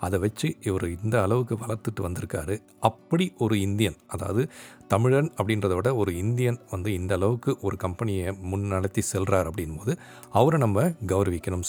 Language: Tamil